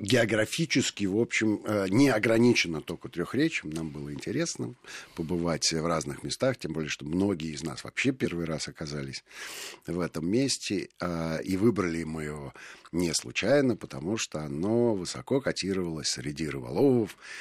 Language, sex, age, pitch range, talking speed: Russian, male, 50-69, 80-115 Hz, 135 wpm